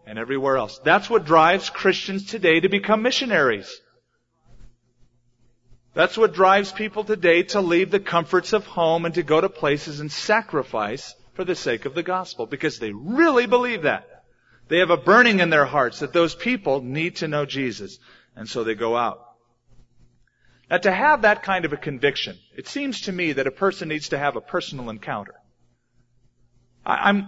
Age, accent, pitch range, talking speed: 40-59, American, 140-195 Hz, 180 wpm